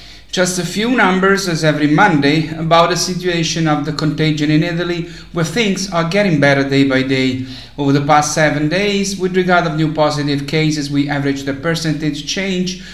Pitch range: 135-165 Hz